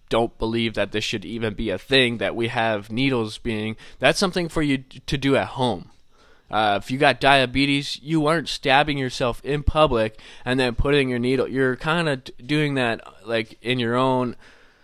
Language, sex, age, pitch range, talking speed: English, male, 20-39, 115-140 Hz, 195 wpm